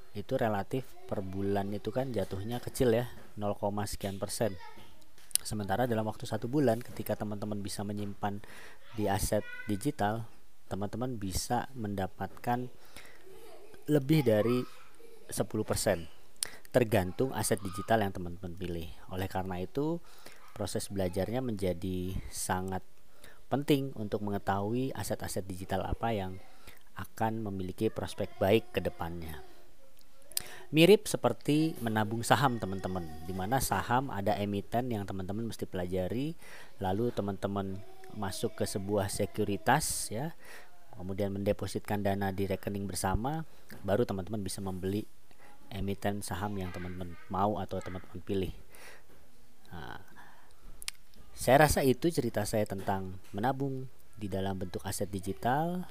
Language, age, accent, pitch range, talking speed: Indonesian, 20-39, native, 95-120 Hz, 115 wpm